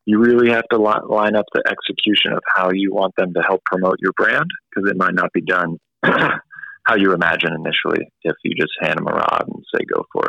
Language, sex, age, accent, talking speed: English, male, 30-49, American, 235 wpm